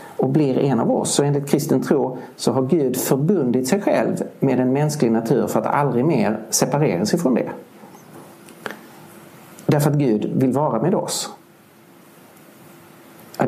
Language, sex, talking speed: Danish, male, 150 wpm